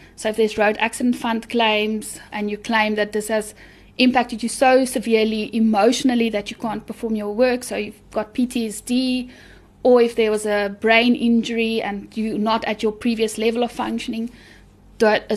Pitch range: 220-250 Hz